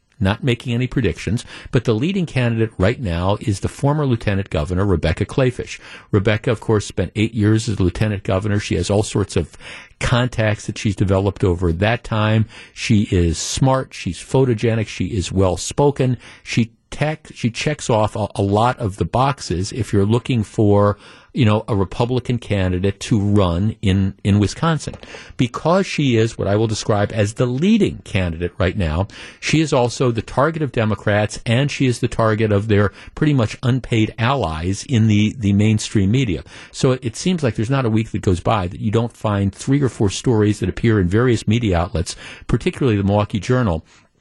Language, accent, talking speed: English, American, 180 wpm